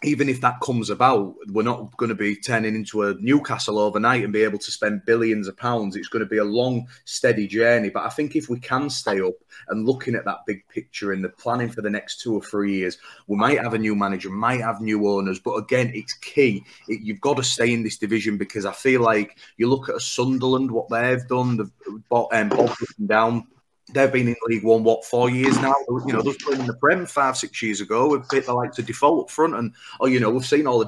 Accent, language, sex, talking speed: British, English, male, 250 wpm